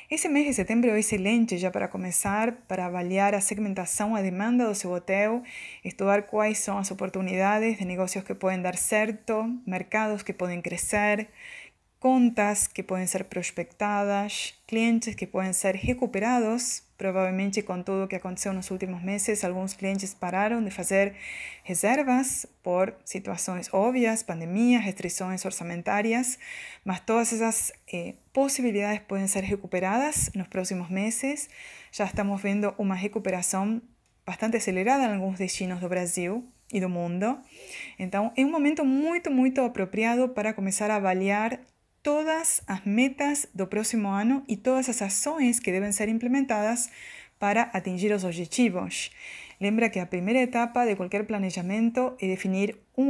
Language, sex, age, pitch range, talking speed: Portuguese, female, 20-39, 190-245 Hz, 150 wpm